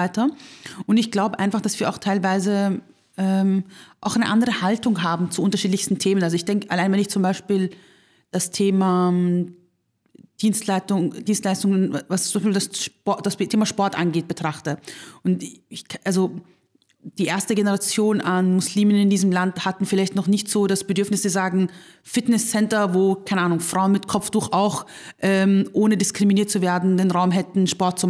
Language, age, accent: German, 30-49, German